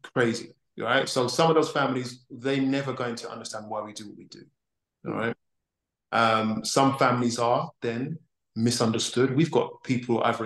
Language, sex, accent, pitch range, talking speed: English, male, British, 120-155 Hz, 180 wpm